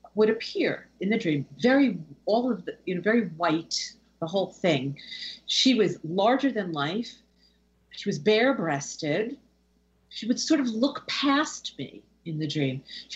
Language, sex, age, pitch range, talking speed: English, female, 50-69, 160-230 Hz, 165 wpm